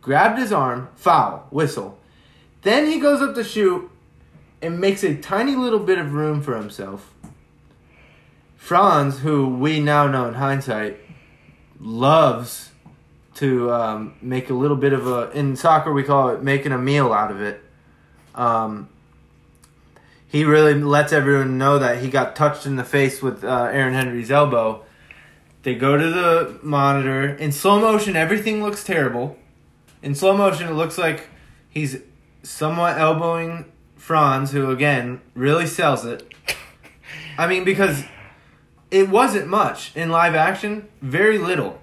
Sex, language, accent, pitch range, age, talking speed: male, English, American, 130-190 Hz, 20-39, 150 wpm